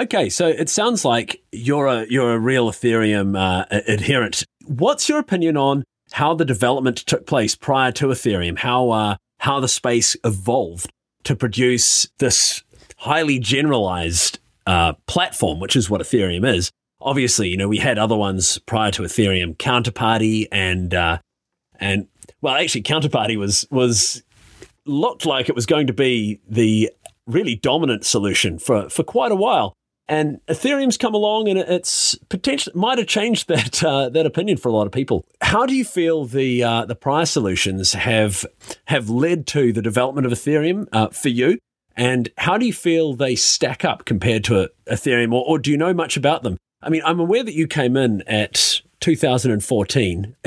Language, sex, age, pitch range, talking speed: English, male, 30-49, 110-150 Hz, 175 wpm